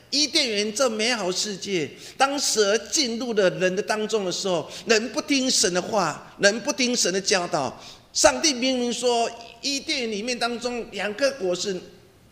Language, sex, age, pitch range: Chinese, male, 50-69, 175-235 Hz